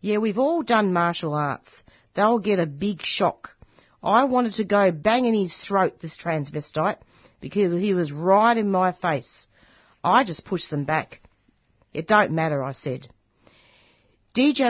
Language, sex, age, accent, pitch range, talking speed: English, female, 40-59, Australian, 160-205 Hz, 160 wpm